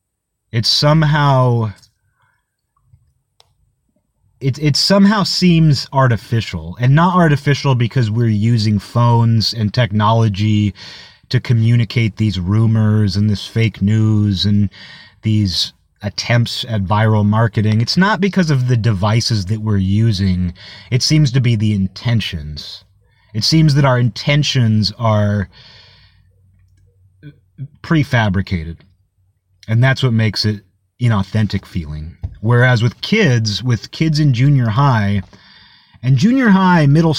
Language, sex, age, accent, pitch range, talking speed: English, male, 30-49, American, 100-130 Hz, 110 wpm